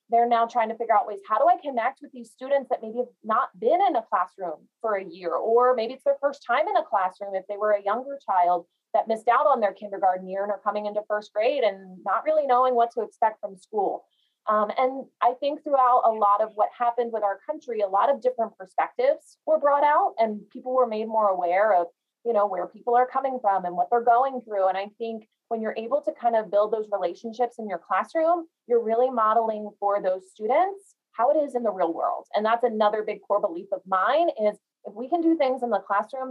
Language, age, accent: English, 20-39, American